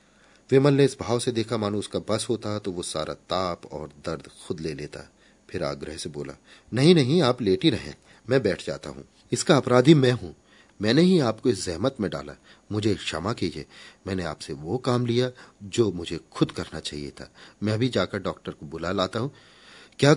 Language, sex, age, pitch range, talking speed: Hindi, male, 40-59, 90-125 Hz, 200 wpm